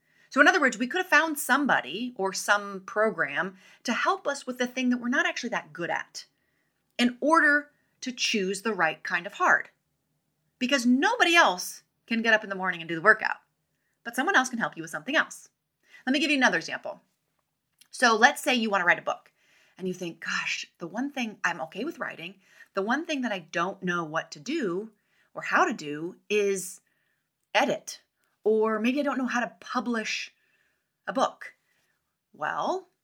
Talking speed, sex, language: 200 wpm, female, English